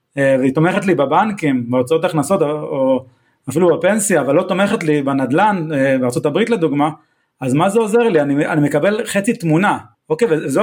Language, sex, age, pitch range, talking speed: Hebrew, male, 30-49, 145-200 Hz, 160 wpm